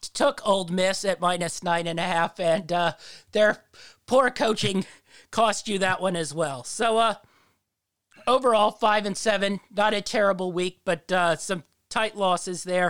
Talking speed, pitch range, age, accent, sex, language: 170 wpm, 175-215 Hz, 40-59, American, male, English